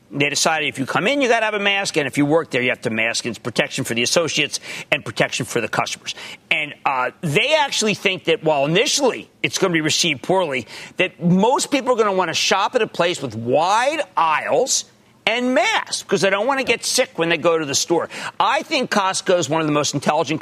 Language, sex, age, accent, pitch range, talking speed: English, male, 50-69, American, 130-200 Hz, 245 wpm